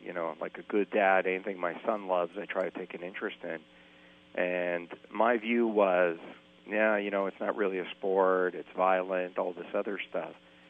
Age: 40-59